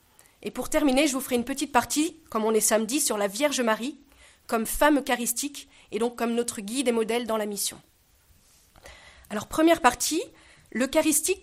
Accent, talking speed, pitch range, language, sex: French, 180 wpm, 230-295 Hz, French, female